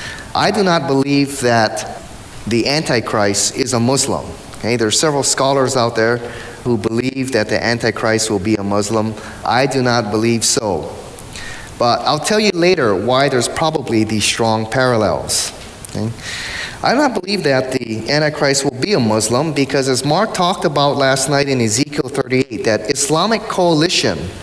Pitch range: 110-160 Hz